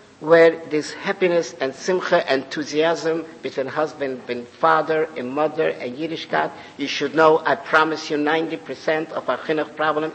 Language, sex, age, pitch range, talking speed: English, male, 50-69, 150-175 Hz, 155 wpm